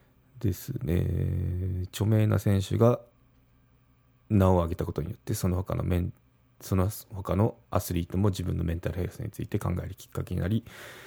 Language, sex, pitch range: Japanese, male, 90-115 Hz